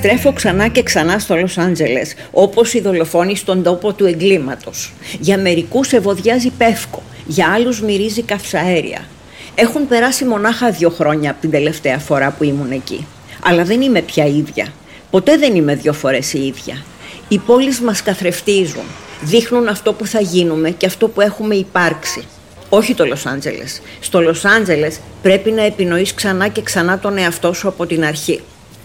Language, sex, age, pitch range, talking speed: Greek, female, 50-69, 160-205 Hz, 165 wpm